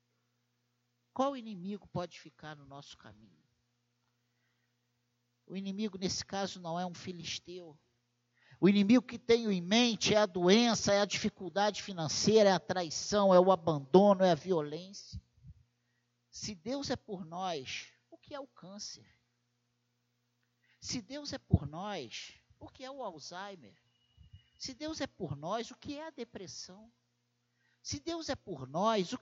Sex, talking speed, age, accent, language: male, 150 wpm, 50-69, Brazilian, Portuguese